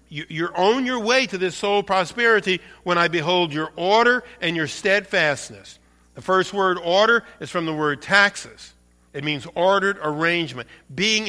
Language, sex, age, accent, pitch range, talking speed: English, male, 50-69, American, 120-185 Hz, 160 wpm